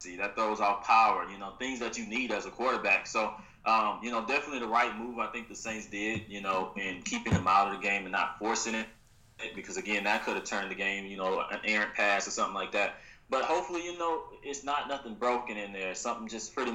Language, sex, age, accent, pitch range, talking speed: English, male, 20-39, American, 100-115 Hz, 245 wpm